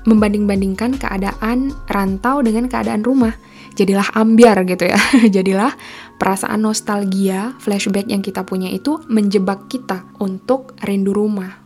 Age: 10-29